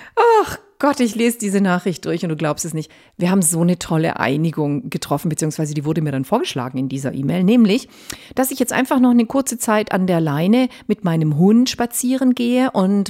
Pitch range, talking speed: 170-250 Hz, 210 wpm